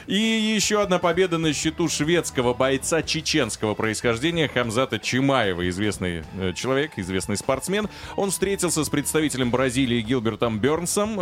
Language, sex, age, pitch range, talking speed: Russian, male, 30-49, 115-155 Hz, 125 wpm